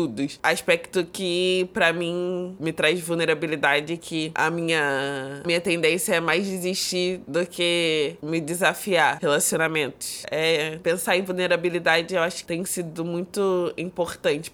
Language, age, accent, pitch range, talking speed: Portuguese, 20-39, Brazilian, 165-215 Hz, 130 wpm